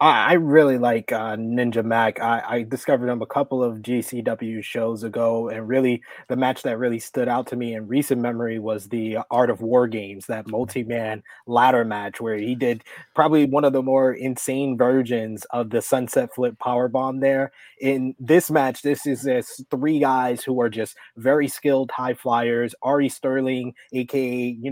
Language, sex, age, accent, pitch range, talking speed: English, male, 20-39, American, 115-135 Hz, 180 wpm